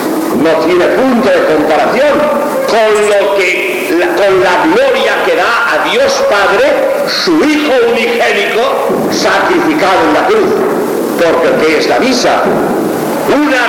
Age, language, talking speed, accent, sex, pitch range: 60-79, Spanish, 125 wpm, Spanish, male, 210-325 Hz